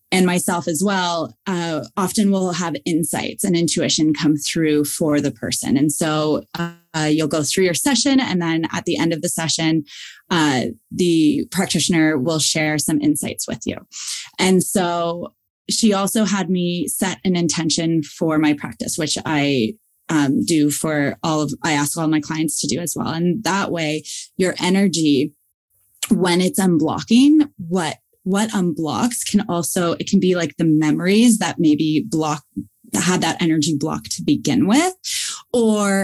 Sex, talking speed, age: female, 165 wpm, 20-39